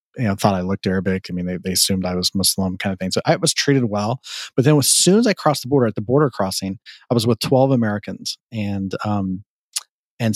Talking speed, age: 250 wpm, 30-49